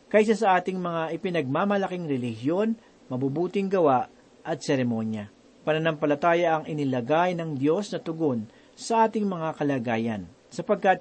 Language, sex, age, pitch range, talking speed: Filipino, male, 50-69, 145-190 Hz, 120 wpm